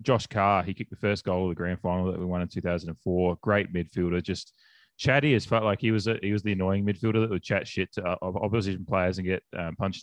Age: 20-39